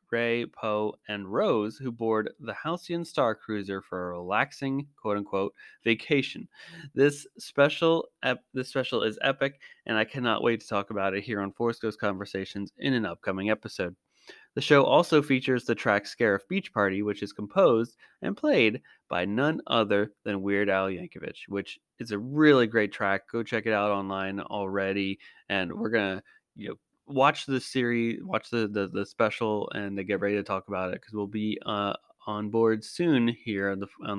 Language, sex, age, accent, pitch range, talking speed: English, male, 20-39, American, 100-125 Hz, 185 wpm